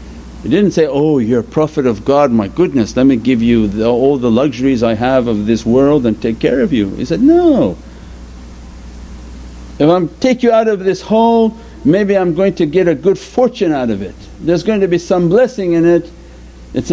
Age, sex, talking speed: 60-79, male, 210 wpm